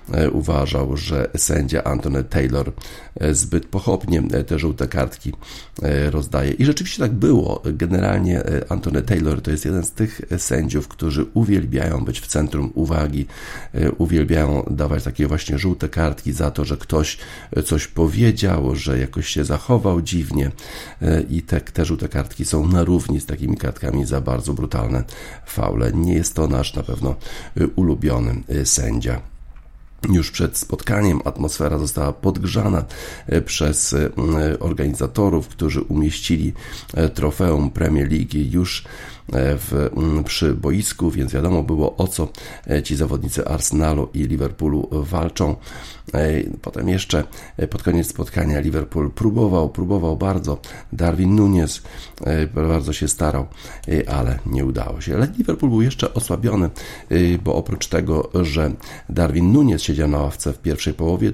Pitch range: 70-85 Hz